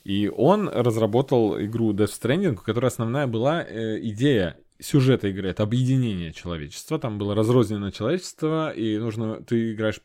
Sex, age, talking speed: male, 20-39, 135 wpm